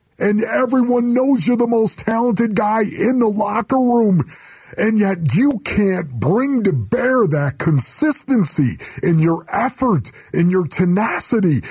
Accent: American